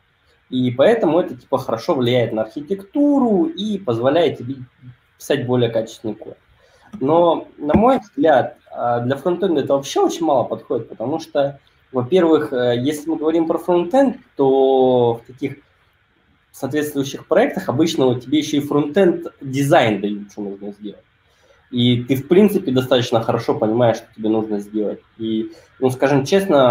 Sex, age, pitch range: male, 20-39, 110-145 Hz